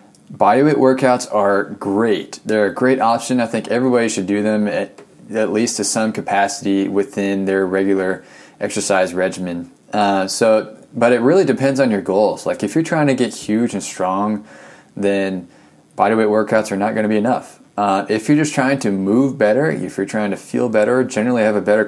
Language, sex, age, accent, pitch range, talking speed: English, male, 20-39, American, 95-115 Hz, 190 wpm